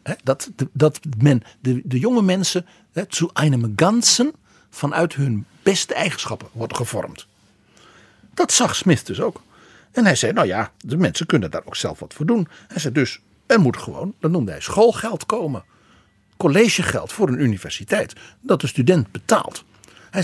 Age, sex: 60-79, male